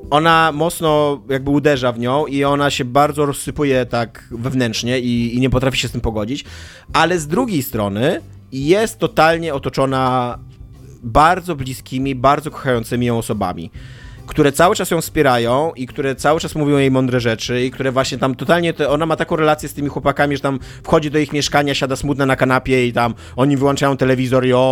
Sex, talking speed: male, 185 wpm